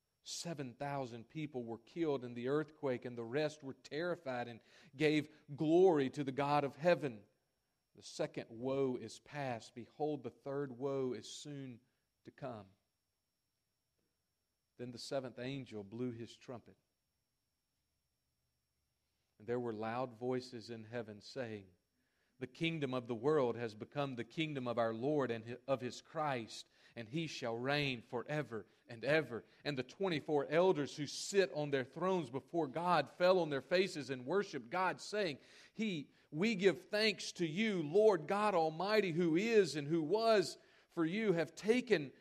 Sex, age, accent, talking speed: male, 40-59, American, 155 wpm